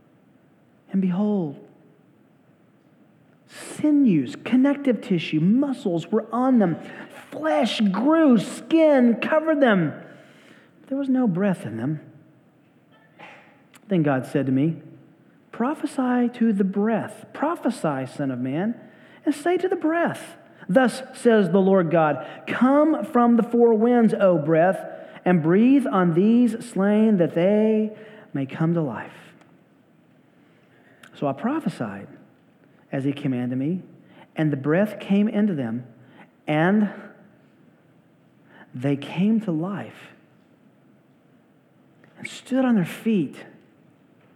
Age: 40-59